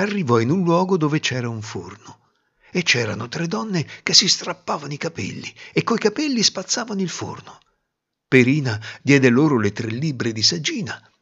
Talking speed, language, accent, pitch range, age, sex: 165 wpm, Italian, native, 125-200 Hz, 60-79, male